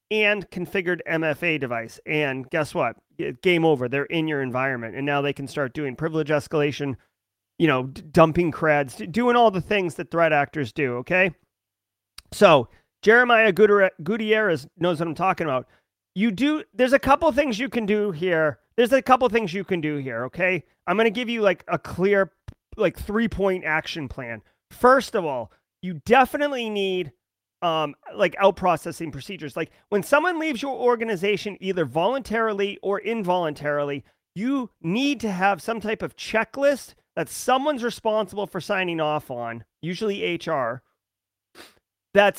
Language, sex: English, male